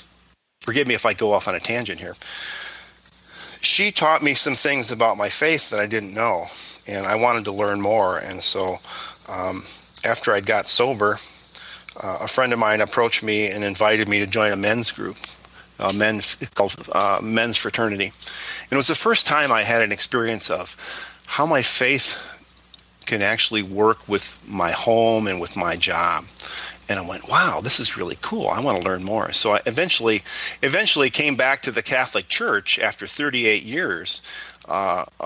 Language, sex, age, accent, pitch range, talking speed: English, male, 40-59, American, 105-130 Hz, 180 wpm